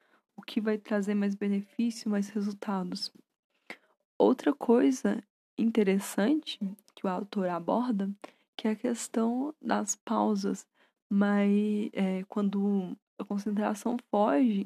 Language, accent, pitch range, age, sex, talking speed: Portuguese, Brazilian, 200-235 Hz, 10-29, female, 110 wpm